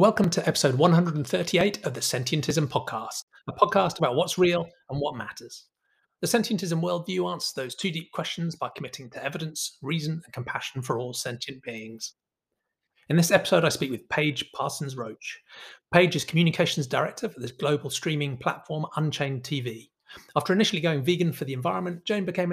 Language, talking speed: English, 170 wpm